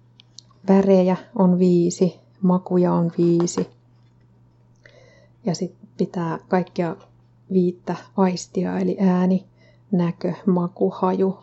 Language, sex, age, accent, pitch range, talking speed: Finnish, female, 30-49, native, 125-190 Hz, 90 wpm